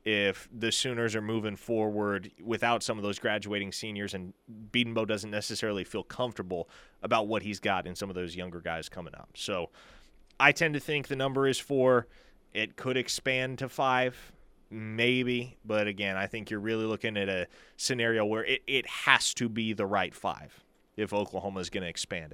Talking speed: 190 wpm